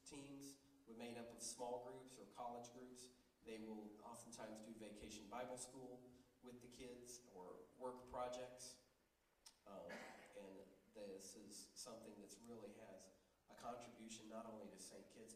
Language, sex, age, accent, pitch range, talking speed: English, male, 40-59, American, 100-120 Hz, 150 wpm